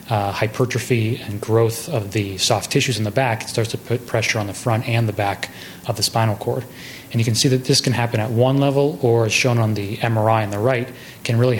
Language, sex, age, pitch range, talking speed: English, male, 30-49, 110-125 Hz, 250 wpm